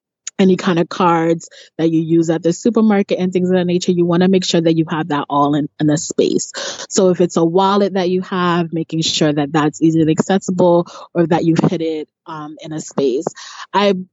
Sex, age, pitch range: female, 20-39, 160-185 Hz